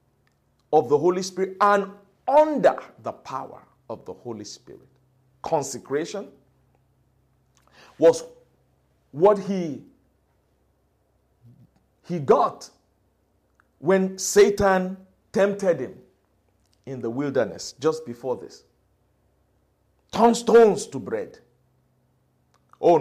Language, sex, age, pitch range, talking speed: English, male, 50-69, 130-215 Hz, 85 wpm